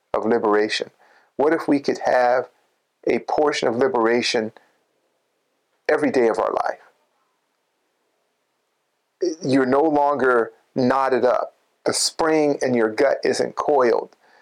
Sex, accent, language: male, American, English